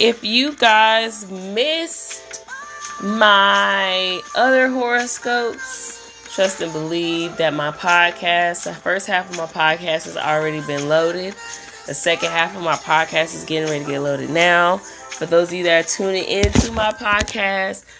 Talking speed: 155 wpm